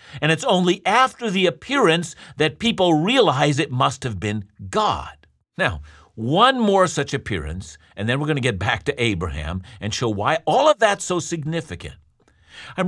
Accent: American